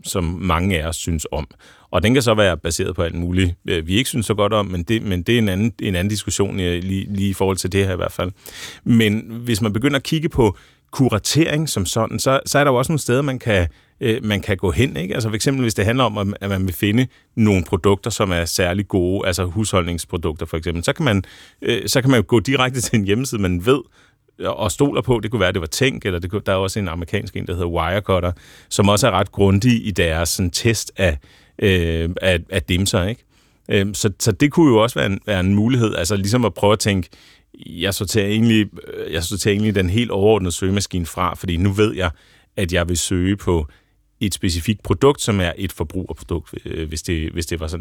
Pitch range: 90-110 Hz